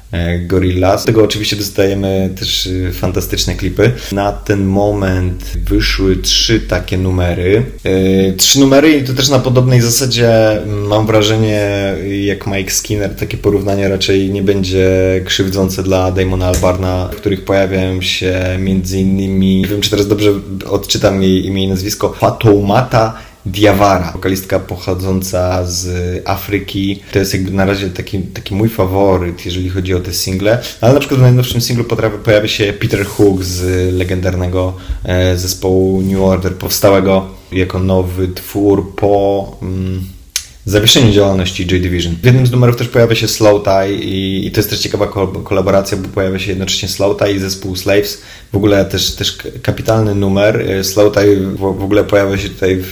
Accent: native